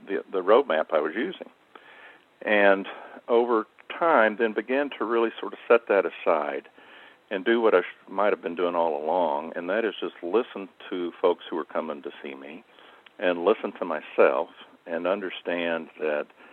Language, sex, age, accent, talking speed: English, male, 50-69, American, 175 wpm